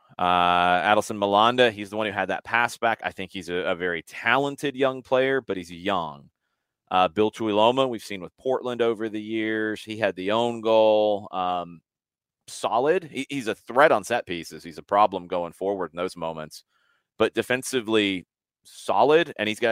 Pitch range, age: 95-115 Hz, 30-49